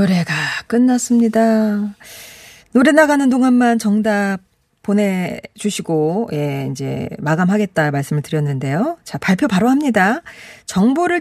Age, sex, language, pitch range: 40-59, female, Korean, 170-250 Hz